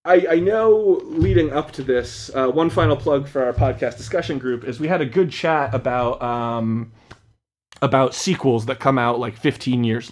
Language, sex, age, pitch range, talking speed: English, male, 20-39, 120-160 Hz, 190 wpm